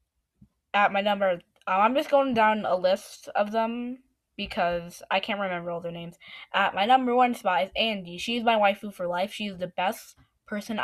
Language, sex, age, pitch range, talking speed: English, female, 10-29, 185-230 Hz, 195 wpm